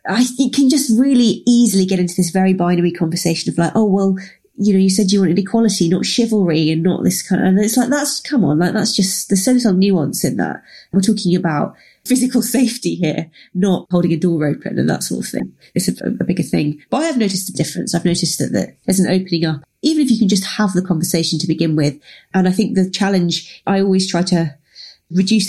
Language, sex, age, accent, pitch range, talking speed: English, female, 30-49, British, 160-195 Hz, 235 wpm